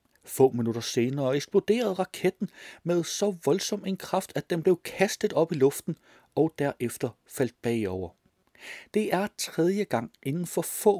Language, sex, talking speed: Danish, male, 155 wpm